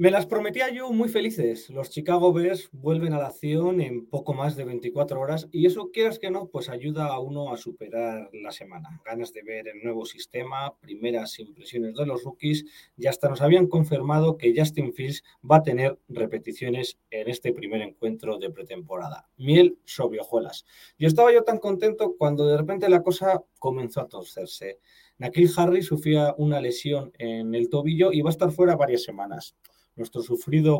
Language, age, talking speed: Spanish, 30-49, 185 wpm